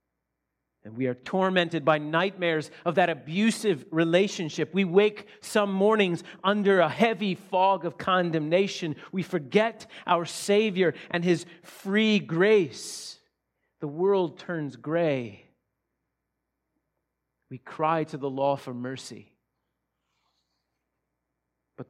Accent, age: American, 40-59